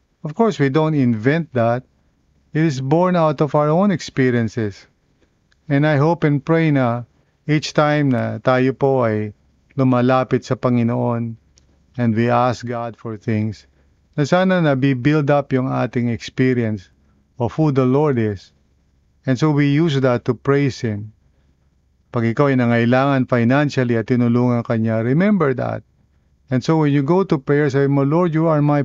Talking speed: 165 wpm